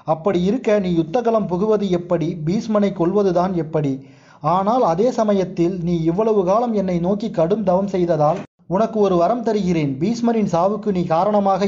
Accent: native